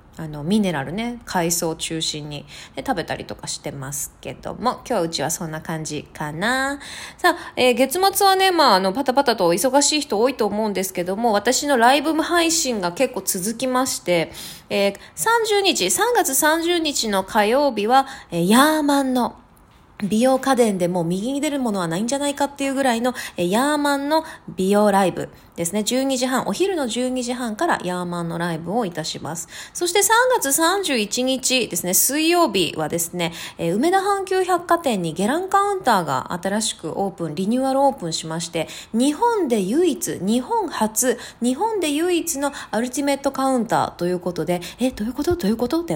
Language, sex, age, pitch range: Japanese, female, 20-39, 180-290 Hz